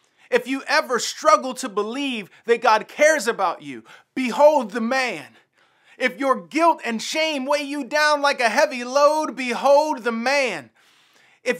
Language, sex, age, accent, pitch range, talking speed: English, male, 30-49, American, 160-255 Hz, 155 wpm